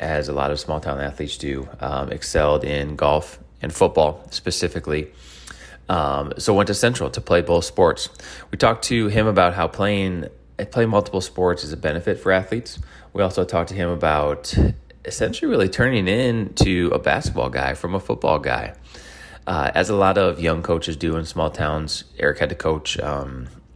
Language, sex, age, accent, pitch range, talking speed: English, male, 20-39, American, 75-95 Hz, 180 wpm